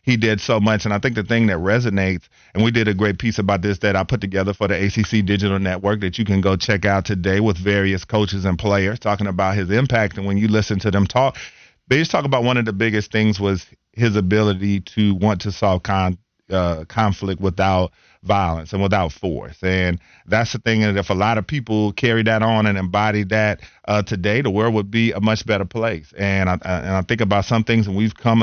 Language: English